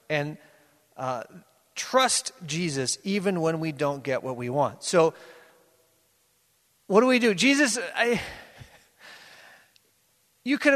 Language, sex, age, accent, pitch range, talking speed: English, male, 30-49, American, 175-240 Hz, 115 wpm